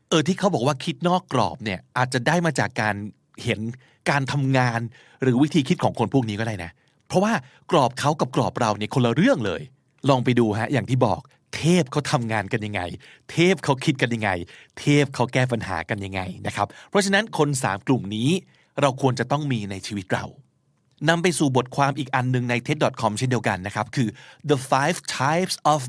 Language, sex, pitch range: Thai, male, 120-155 Hz